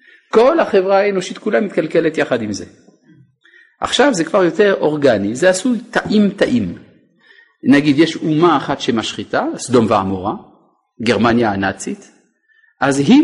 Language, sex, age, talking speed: Hebrew, male, 50-69, 125 wpm